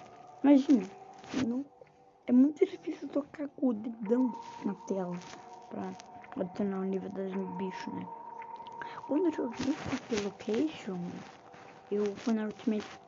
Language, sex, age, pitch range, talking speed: Portuguese, female, 20-39, 215-285 Hz, 125 wpm